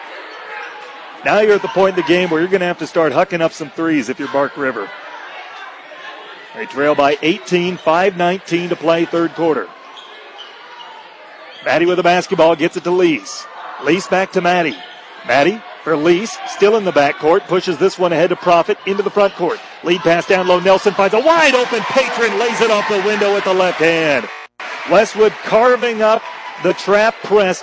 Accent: American